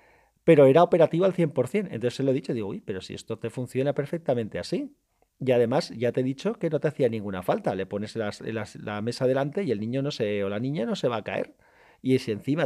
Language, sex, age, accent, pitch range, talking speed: Spanish, male, 40-59, Spanish, 110-150 Hz, 255 wpm